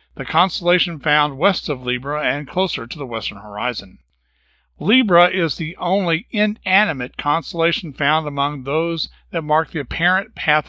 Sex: male